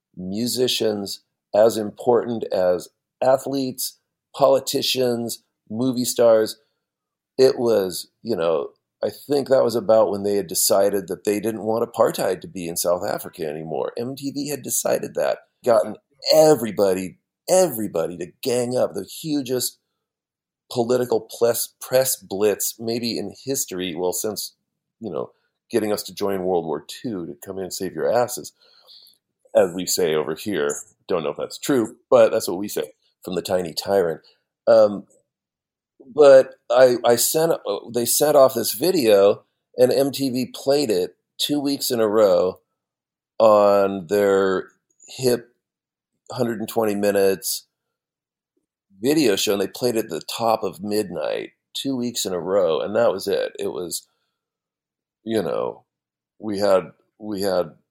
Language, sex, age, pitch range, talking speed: English, male, 40-59, 110-175 Hz, 145 wpm